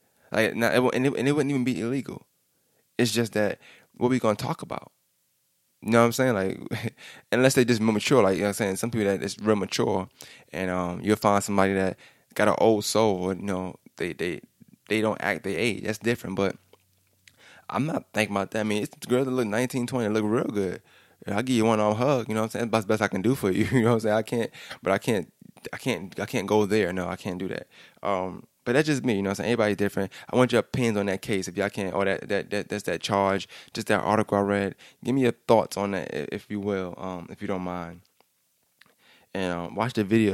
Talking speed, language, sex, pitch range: 250 wpm, English, male, 95-120 Hz